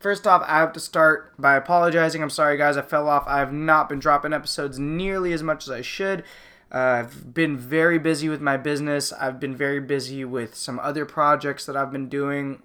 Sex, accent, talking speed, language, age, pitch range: male, American, 220 wpm, English, 20-39, 135-155 Hz